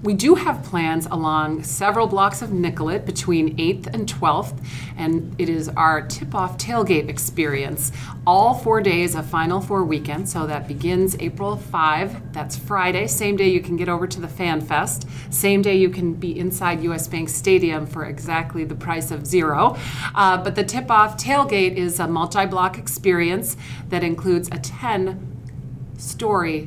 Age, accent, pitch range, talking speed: 40-59, American, 150-185 Hz, 165 wpm